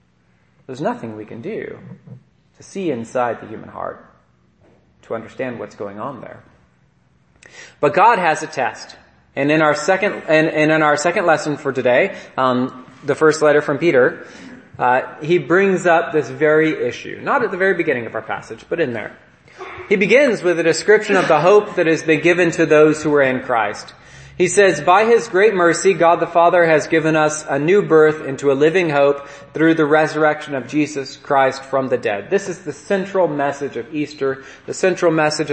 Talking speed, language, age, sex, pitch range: 195 wpm, English, 30-49, male, 125-160 Hz